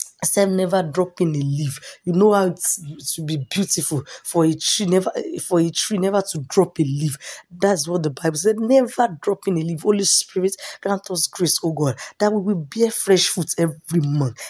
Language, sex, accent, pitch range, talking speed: English, female, Nigerian, 155-200 Hz, 205 wpm